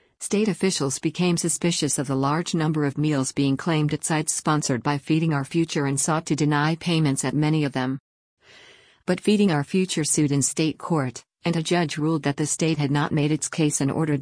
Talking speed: 210 wpm